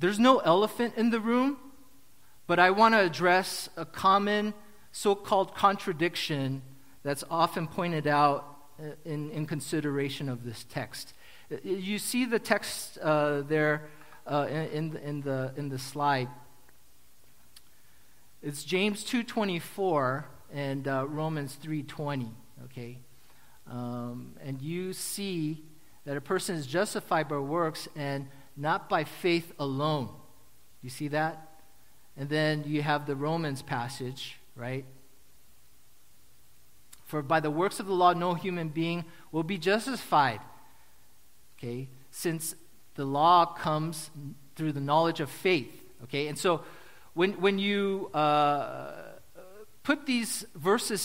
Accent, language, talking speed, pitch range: American, English, 120 wpm, 140-185 Hz